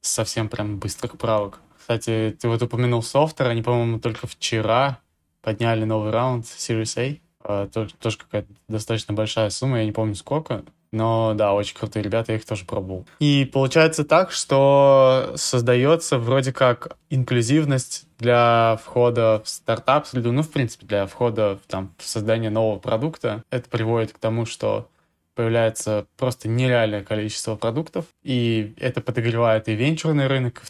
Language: Russian